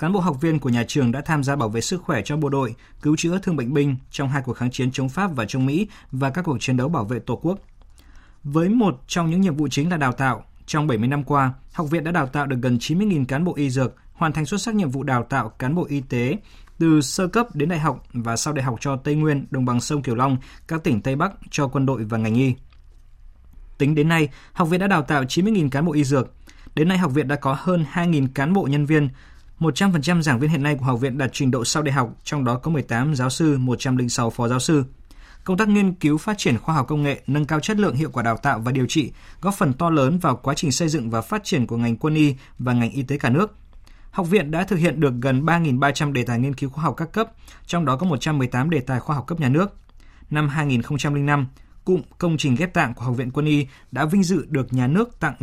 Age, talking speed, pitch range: 20-39, 265 wpm, 125-160 Hz